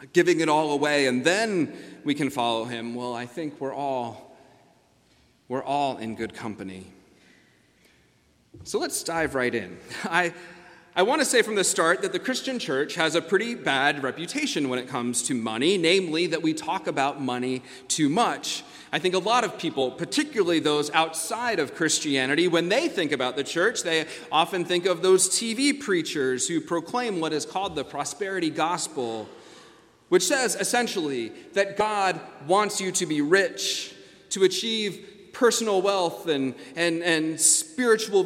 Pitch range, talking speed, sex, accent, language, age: 135-195 Hz, 165 wpm, male, American, English, 30-49